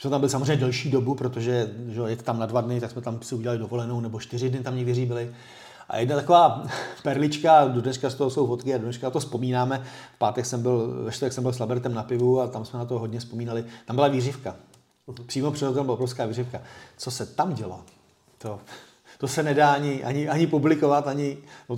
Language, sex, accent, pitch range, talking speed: Czech, male, native, 120-145 Hz, 210 wpm